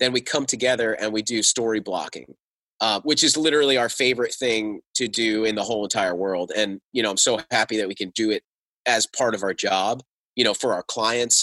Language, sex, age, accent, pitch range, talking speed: English, male, 30-49, American, 110-140 Hz, 230 wpm